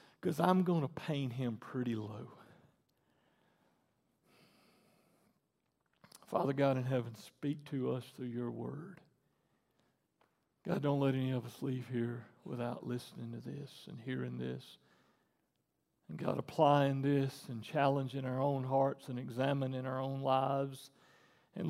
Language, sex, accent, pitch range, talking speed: English, male, American, 130-160 Hz, 135 wpm